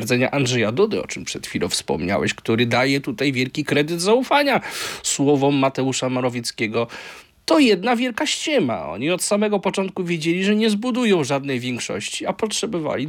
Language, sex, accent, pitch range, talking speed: Polish, male, native, 140-215 Hz, 150 wpm